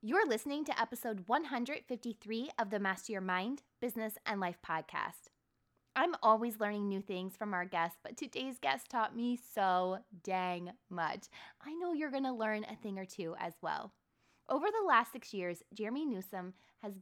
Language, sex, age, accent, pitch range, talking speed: English, female, 20-39, American, 185-250 Hz, 175 wpm